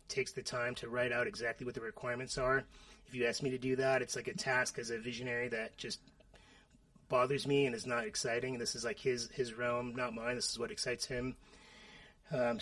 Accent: American